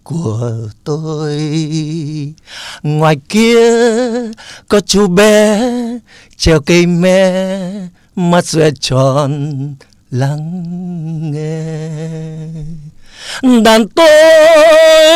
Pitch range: 160-255 Hz